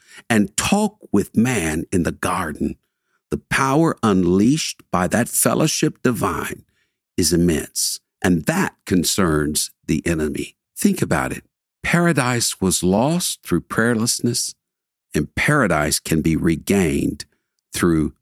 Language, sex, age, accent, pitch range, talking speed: English, male, 60-79, American, 90-125 Hz, 115 wpm